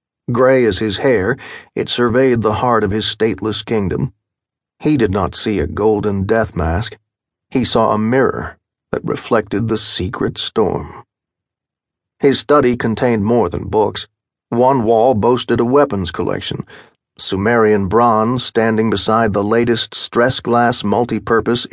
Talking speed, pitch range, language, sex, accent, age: 135 wpm, 105-120 Hz, English, male, American, 40-59